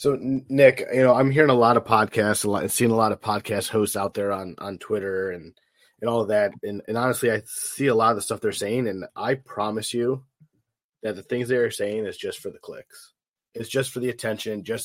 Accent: American